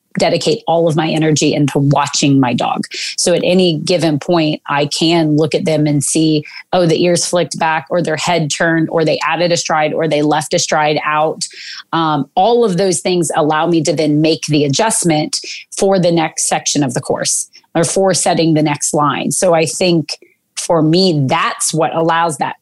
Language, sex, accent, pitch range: English, female, American, 155-180 Hz